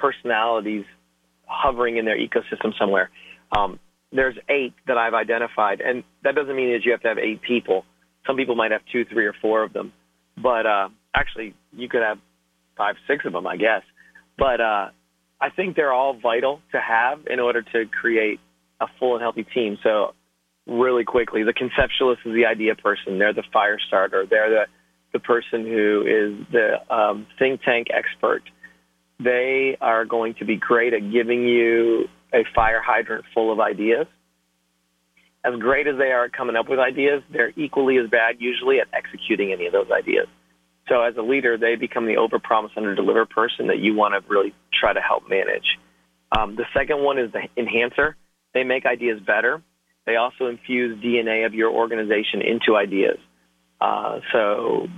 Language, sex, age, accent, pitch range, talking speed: English, male, 40-59, American, 100-125 Hz, 180 wpm